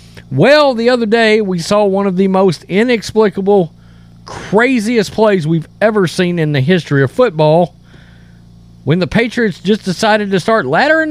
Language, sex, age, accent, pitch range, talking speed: English, male, 40-59, American, 140-225 Hz, 155 wpm